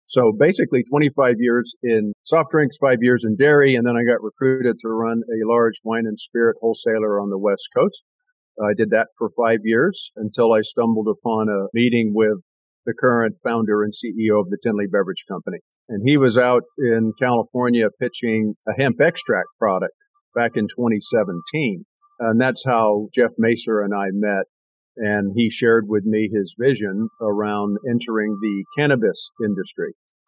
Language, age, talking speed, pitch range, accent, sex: English, 50-69, 170 wpm, 105-125 Hz, American, male